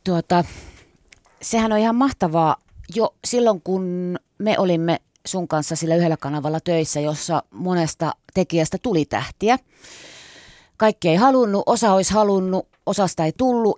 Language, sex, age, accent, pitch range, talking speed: Finnish, female, 30-49, native, 155-185 Hz, 130 wpm